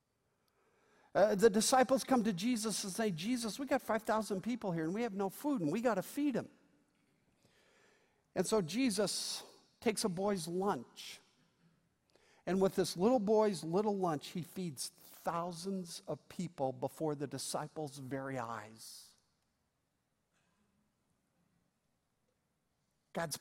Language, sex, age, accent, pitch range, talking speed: English, male, 50-69, American, 190-245 Hz, 130 wpm